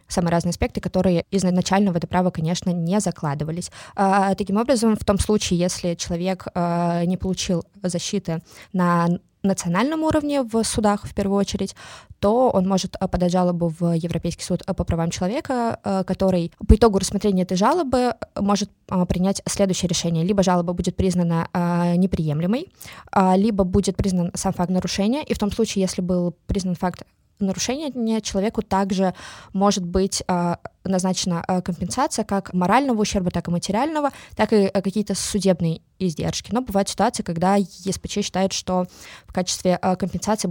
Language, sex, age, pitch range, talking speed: Russian, female, 20-39, 180-205 Hz, 150 wpm